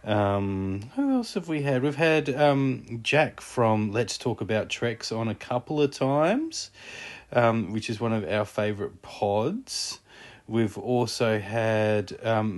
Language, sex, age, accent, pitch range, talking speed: English, male, 30-49, Australian, 100-125 Hz, 155 wpm